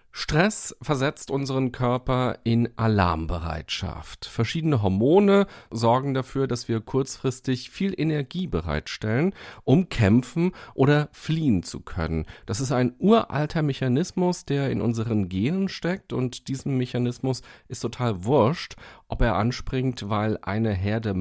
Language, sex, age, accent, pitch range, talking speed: German, male, 40-59, German, 105-140 Hz, 125 wpm